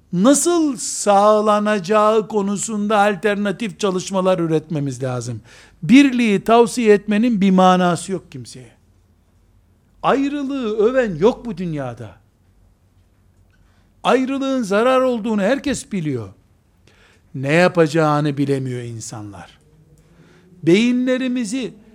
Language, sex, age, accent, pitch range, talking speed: Turkish, male, 60-79, native, 135-225 Hz, 80 wpm